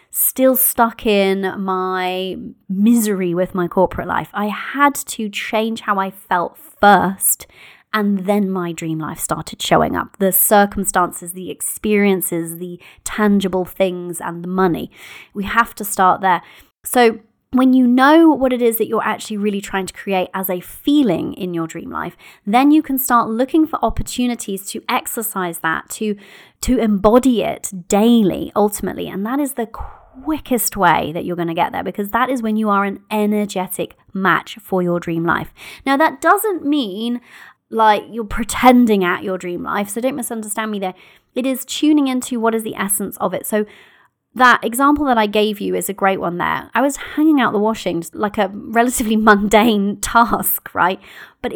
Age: 30-49